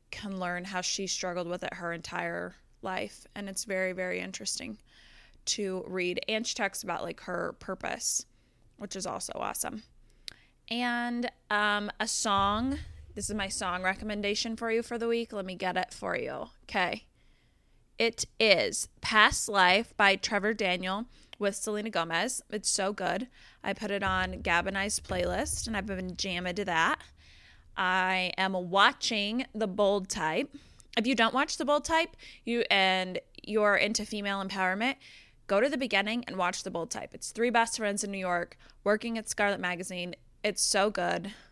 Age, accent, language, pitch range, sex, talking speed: 20-39, American, English, 185-230 Hz, female, 170 wpm